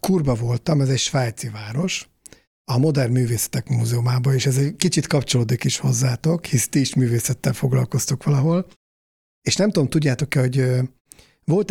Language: Hungarian